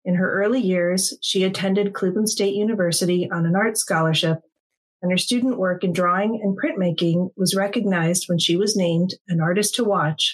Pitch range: 175-210 Hz